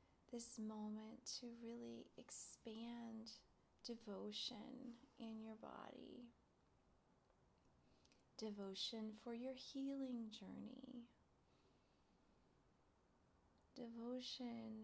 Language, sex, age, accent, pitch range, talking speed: English, female, 30-49, American, 220-255 Hz, 60 wpm